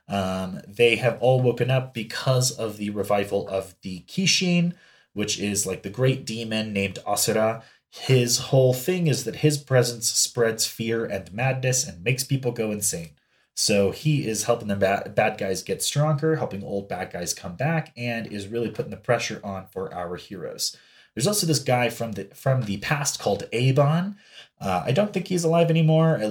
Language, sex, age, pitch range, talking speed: English, male, 30-49, 105-145 Hz, 185 wpm